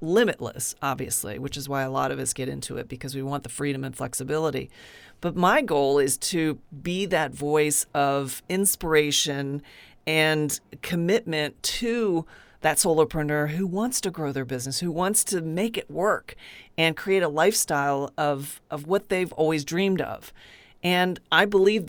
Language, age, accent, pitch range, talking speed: English, 40-59, American, 145-180 Hz, 165 wpm